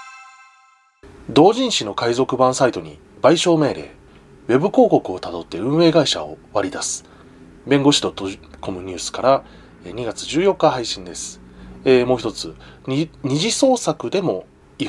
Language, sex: Japanese, male